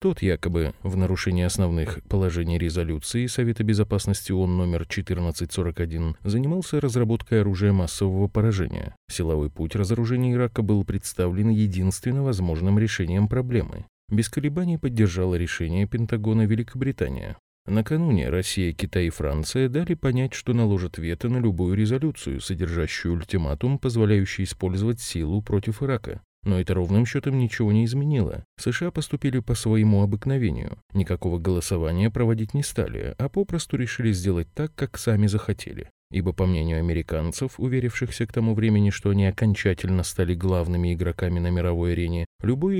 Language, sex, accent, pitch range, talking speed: Russian, male, native, 90-120 Hz, 135 wpm